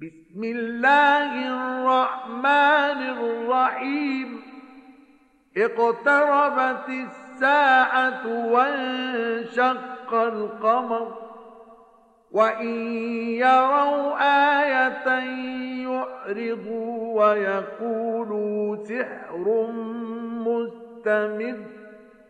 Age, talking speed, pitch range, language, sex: 50-69, 40 wpm, 215-255 Hz, Arabic, male